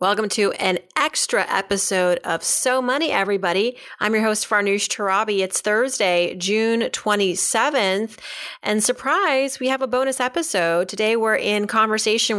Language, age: English, 30-49